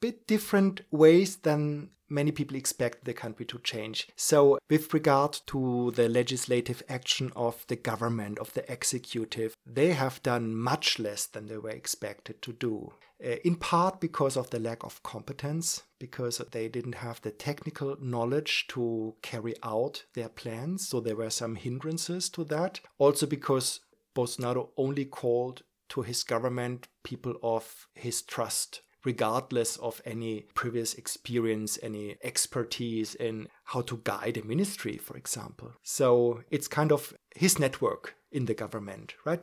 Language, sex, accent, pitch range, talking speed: Danish, male, German, 120-155 Hz, 150 wpm